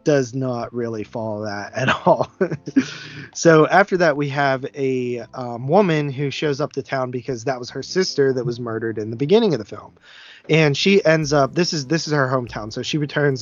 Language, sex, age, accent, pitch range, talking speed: English, male, 20-39, American, 120-155 Hz, 210 wpm